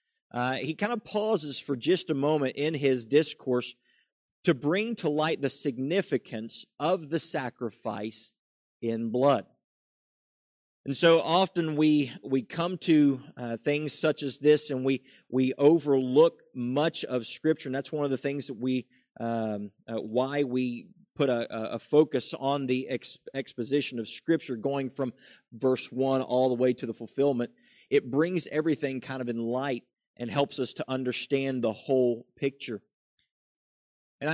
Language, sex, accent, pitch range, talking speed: English, male, American, 120-155 Hz, 155 wpm